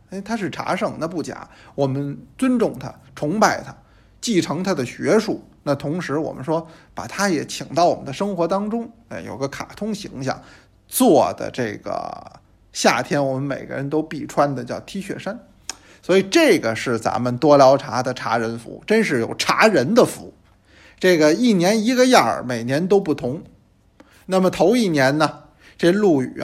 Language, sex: Chinese, male